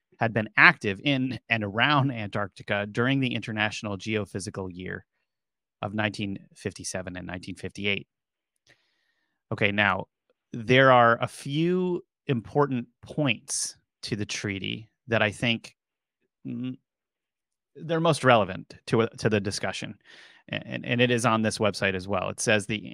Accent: American